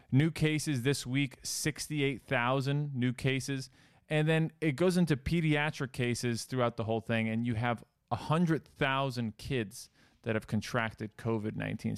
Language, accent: English, American